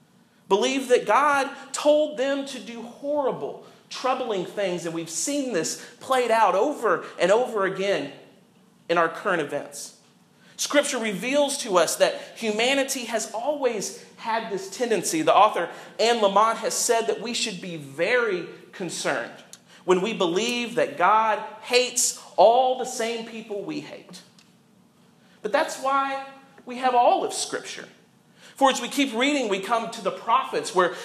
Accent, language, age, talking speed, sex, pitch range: American, English, 40-59, 150 wpm, male, 205-275 Hz